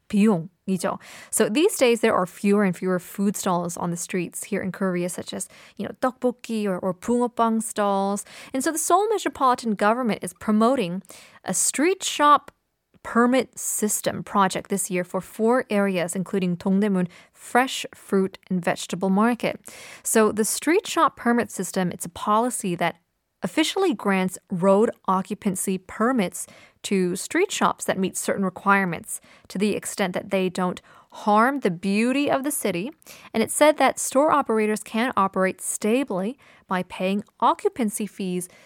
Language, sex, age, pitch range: Korean, female, 20-39, 190-250 Hz